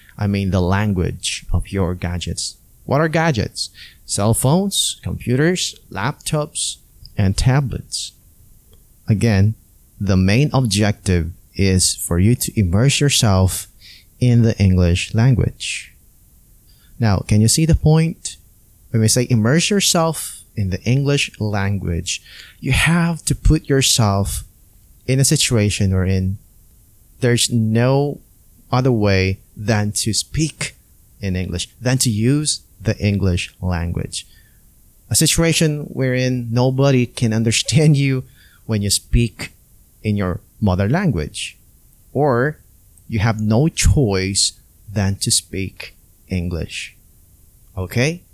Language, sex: English, male